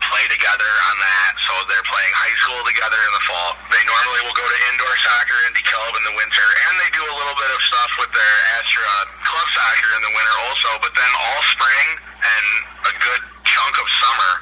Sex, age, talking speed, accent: male, 30-49, 210 wpm, American